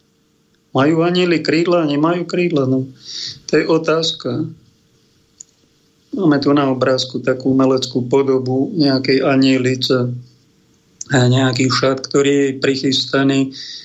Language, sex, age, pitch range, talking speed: Slovak, male, 40-59, 135-155 Hz, 105 wpm